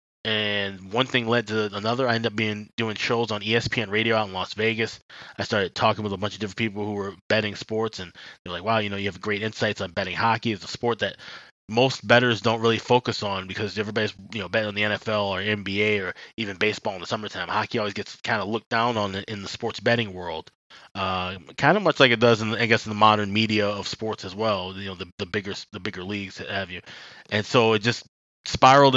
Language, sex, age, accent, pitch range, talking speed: English, male, 20-39, American, 100-115 Hz, 240 wpm